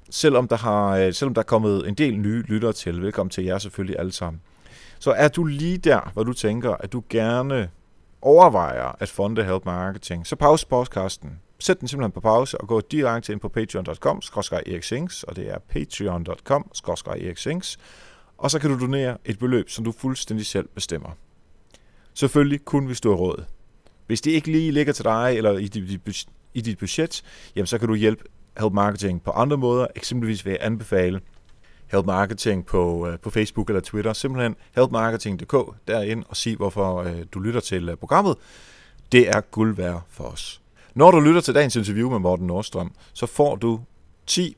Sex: male